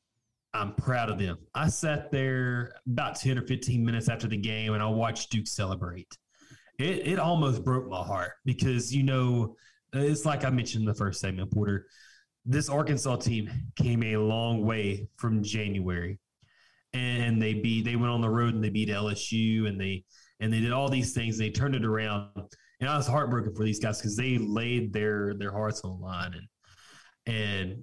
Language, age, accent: English, 20-39, American